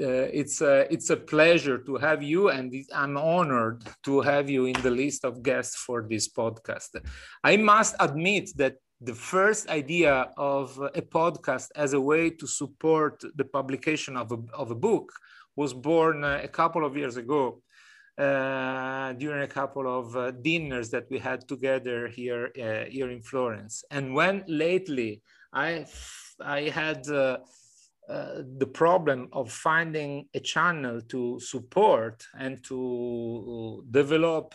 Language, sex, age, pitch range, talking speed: English, male, 40-59, 130-155 Hz, 150 wpm